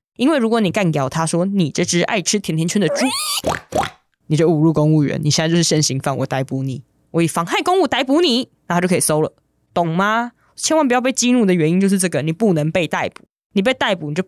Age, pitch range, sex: 20-39, 155-205 Hz, female